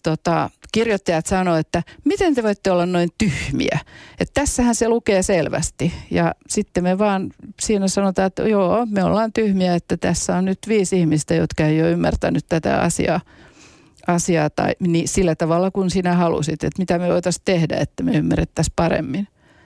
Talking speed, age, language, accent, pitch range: 170 wpm, 40-59, Finnish, native, 165-205 Hz